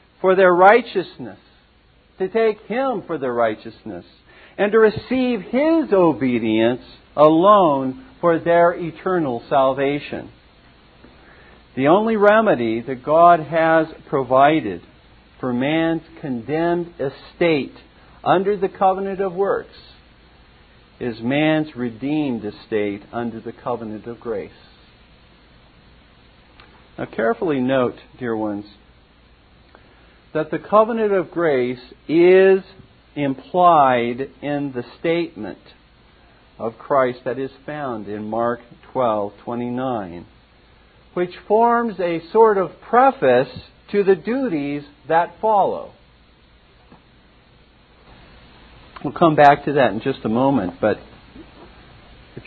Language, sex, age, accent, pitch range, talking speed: English, male, 50-69, American, 120-175 Hz, 100 wpm